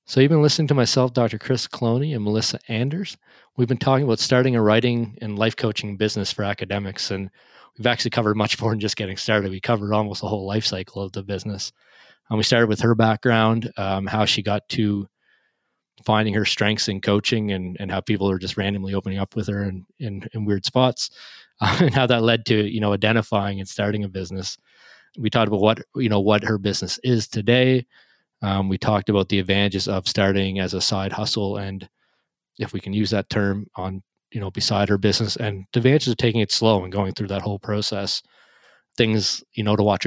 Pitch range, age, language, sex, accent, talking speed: 100-115 Hz, 20-39, English, male, American, 215 wpm